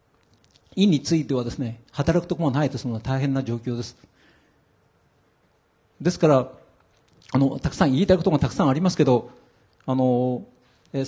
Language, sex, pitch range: Japanese, male, 125-175 Hz